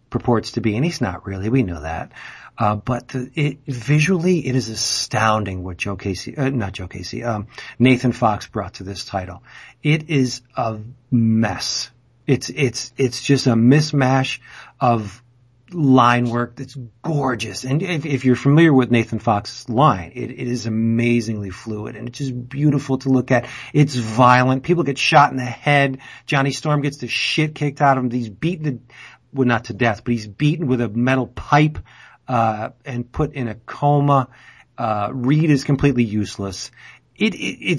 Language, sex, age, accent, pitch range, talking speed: English, male, 40-59, American, 115-145 Hz, 180 wpm